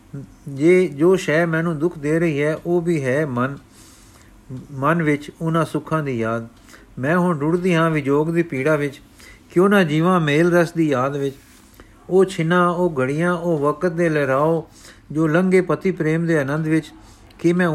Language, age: Punjabi, 50-69